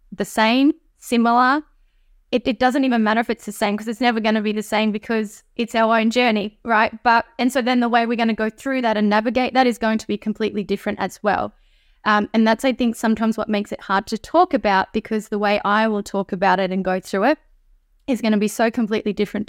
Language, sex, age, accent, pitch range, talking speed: English, female, 20-39, Australian, 195-230 Hz, 250 wpm